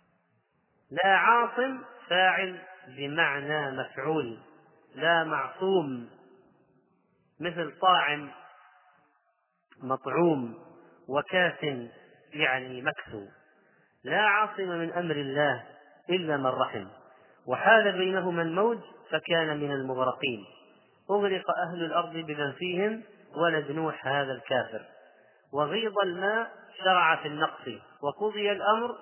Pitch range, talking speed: 145-185 Hz, 85 wpm